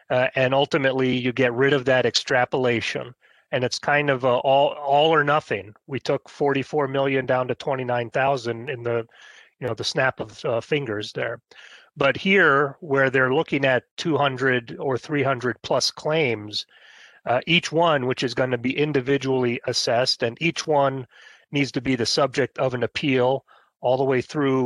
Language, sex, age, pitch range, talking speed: English, male, 30-49, 125-140 Hz, 175 wpm